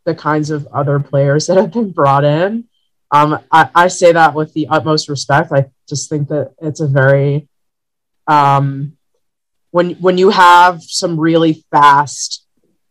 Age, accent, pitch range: 30-49, American, 140-160 Hz